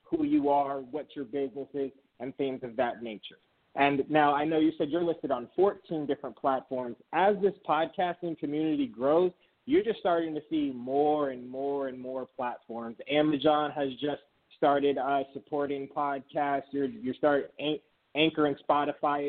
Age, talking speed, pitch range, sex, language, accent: 20-39, 170 wpm, 135-160 Hz, male, English, American